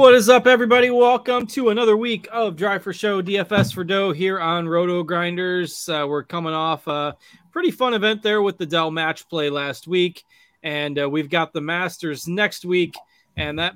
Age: 20-39